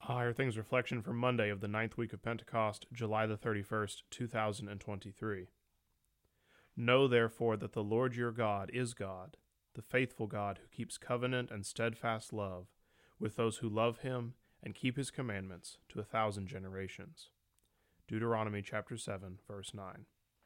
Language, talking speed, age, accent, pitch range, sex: English, 150 wpm, 30-49, American, 100-120 Hz, male